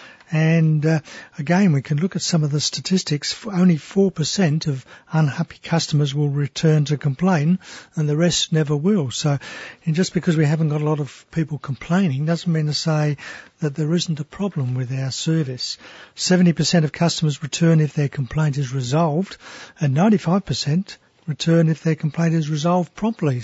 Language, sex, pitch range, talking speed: English, male, 145-170 Hz, 170 wpm